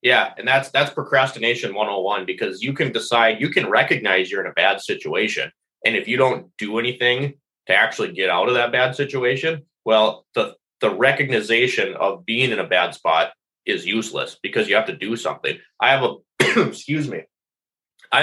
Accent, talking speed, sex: American, 185 wpm, male